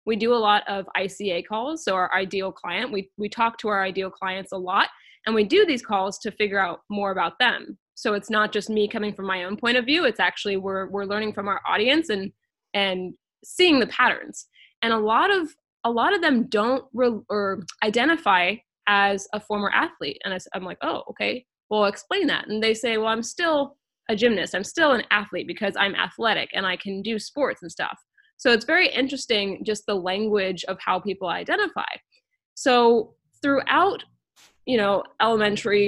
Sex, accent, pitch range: female, American, 195-240 Hz